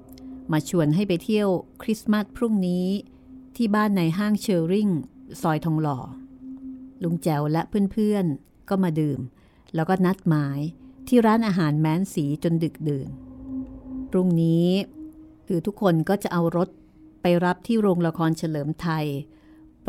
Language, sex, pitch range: Thai, female, 155-235 Hz